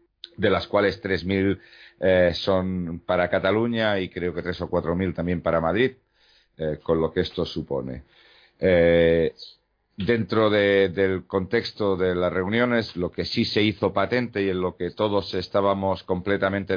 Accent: Spanish